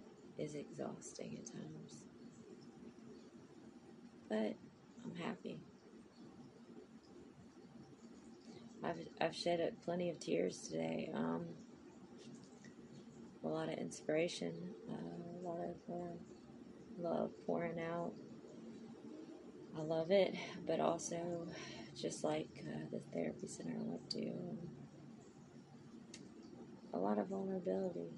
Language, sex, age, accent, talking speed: English, female, 20-39, American, 100 wpm